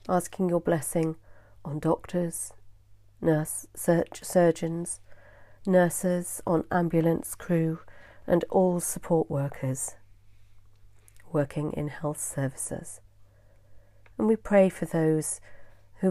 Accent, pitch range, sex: British, 100-165 Hz, female